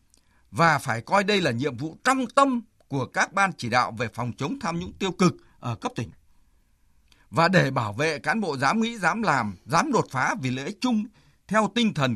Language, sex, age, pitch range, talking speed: Vietnamese, male, 60-79, 130-220 Hz, 215 wpm